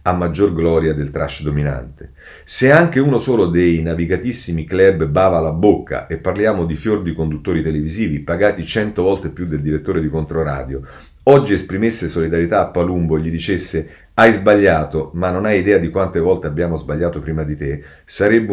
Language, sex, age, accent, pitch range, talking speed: Italian, male, 40-59, native, 80-100 Hz, 175 wpm